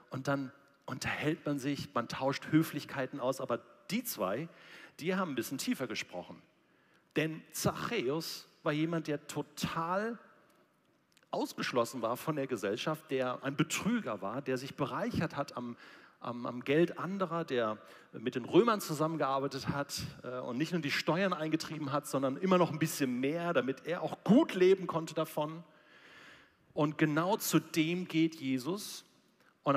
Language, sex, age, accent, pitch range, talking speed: German, male, 40-59, German, 125-160 Hz, 150 wpm